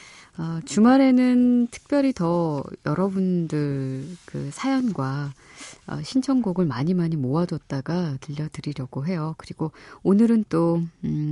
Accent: native